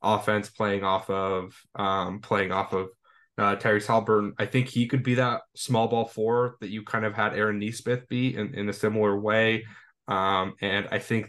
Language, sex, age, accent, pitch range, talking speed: English, male, 10-29, American, 105-125 Hz, 195 wpm